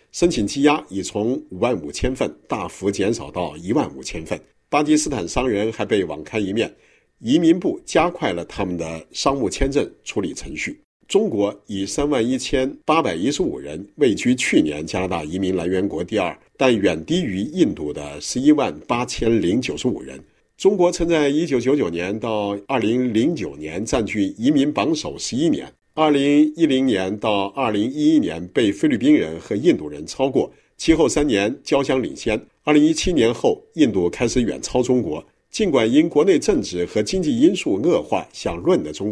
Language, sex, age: Chinese, male, 50-69